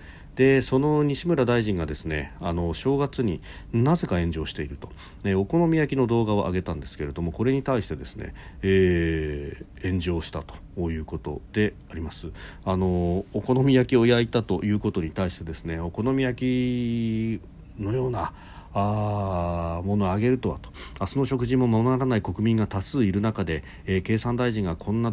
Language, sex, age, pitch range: Japanese, male, 40-59, 85-115 Hz